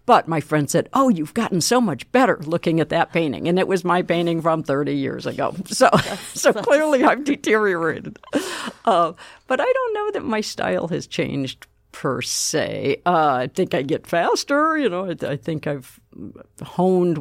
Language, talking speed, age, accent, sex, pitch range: English, 185 wpm, 50-69, American, female, 135-175 Hz